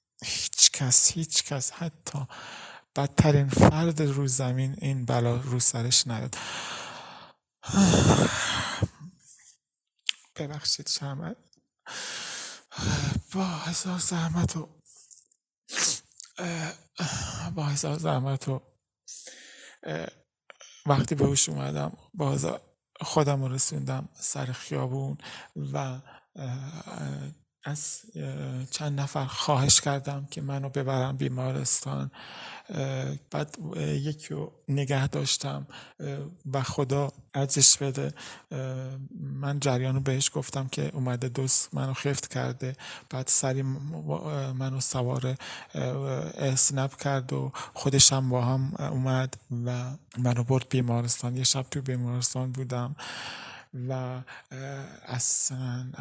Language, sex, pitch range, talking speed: English, male, 125-145 Hz, 85 wpm